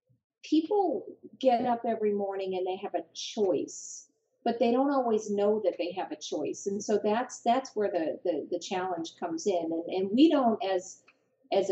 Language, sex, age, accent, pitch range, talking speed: English, female, 40-59, American, 175-240 Hz, 190 wpm